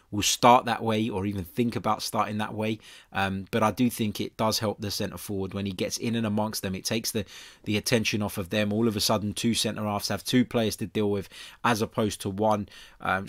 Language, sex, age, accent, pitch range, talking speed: English, male, 20-39, British, 100-125 Hz, 245 wpm